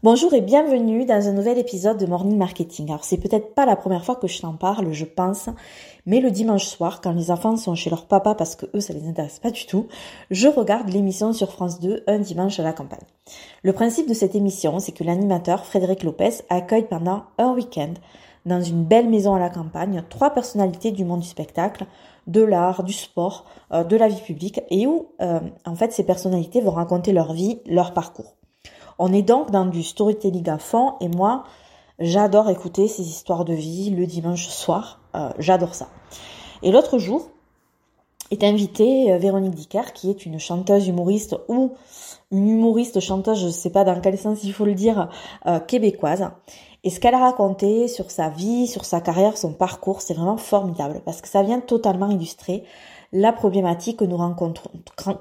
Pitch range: 175-220 Hz